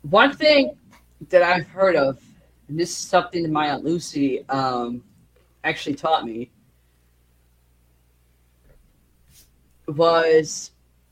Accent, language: American, English